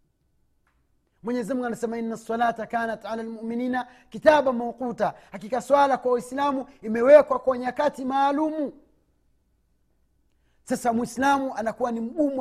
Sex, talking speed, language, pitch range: male, 105 wpm, Swahili, 225-280 Hz